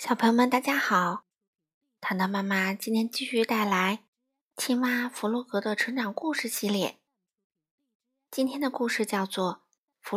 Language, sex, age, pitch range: Chinese, female, 20-39, 195-255 Hz